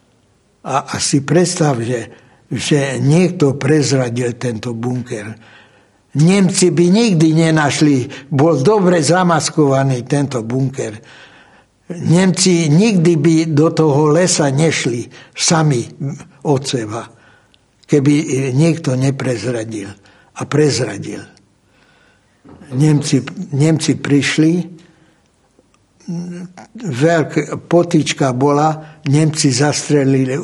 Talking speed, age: 80 wpm, 60-79